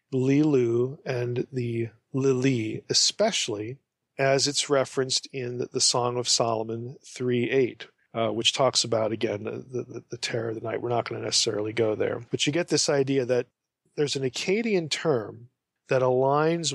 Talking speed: 160 wpm